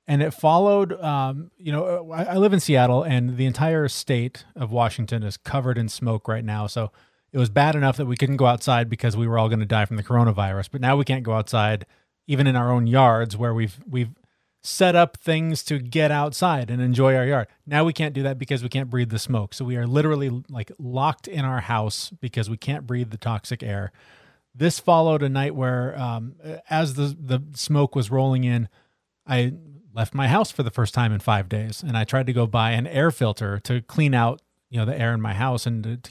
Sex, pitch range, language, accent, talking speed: male, 115-145 Hz, English, American, 235 wpm